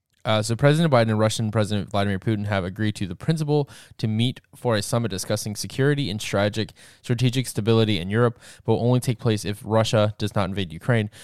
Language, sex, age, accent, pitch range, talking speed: English, male, 10-29, American, 105-120 Hz, 200 wpm